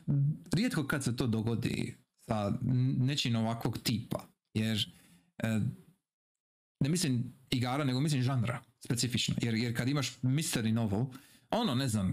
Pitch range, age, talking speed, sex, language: 115-150 Hz, 40-59, 135 wpm, male, Croatian